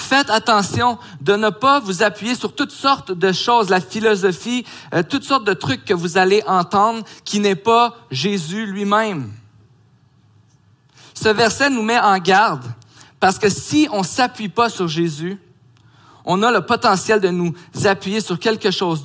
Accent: Canadian